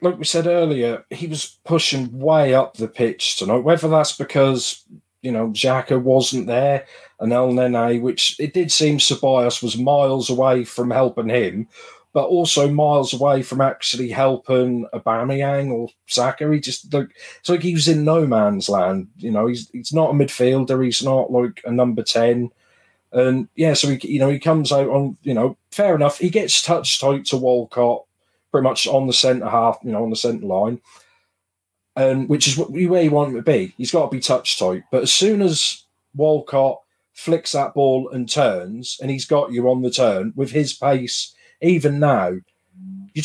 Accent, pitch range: British, 120-150 Hz